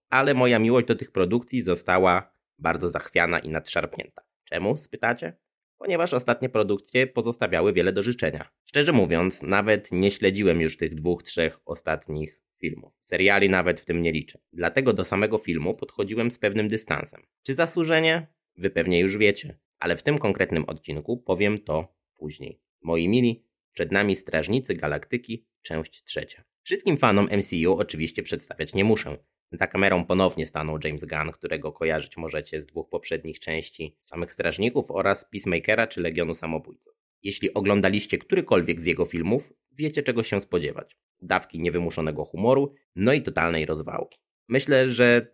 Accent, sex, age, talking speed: native, male, 20-39, 150 wpm